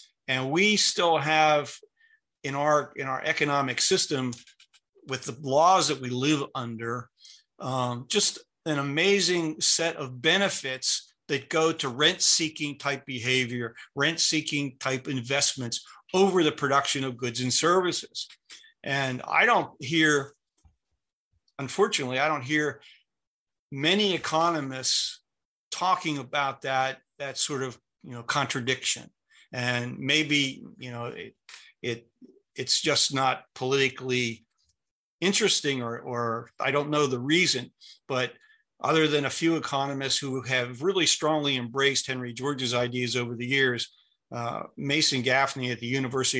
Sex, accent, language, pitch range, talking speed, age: male, American, English, 125-155 Hz, 130 wpm, 50-69